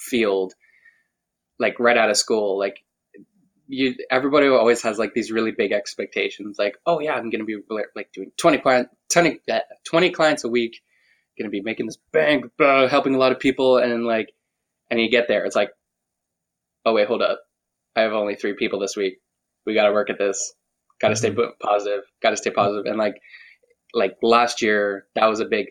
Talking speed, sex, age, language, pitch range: 185 wpm, male, 20-39, English, 100-120 Hz